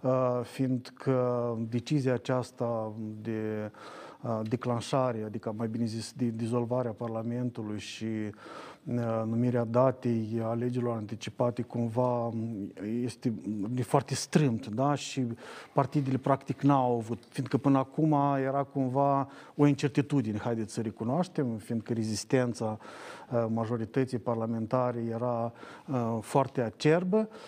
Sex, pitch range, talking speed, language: male, 120-140 Hz, 110 wpm, Romanian